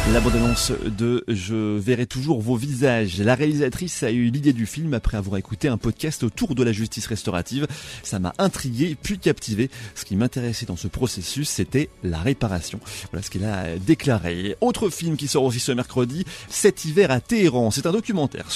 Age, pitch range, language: 30-49, 105-145 Hz, French